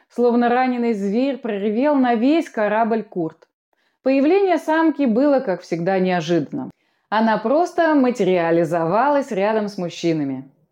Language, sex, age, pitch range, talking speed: Russian, female, 20-39, 180-270 Hz, 110 wpm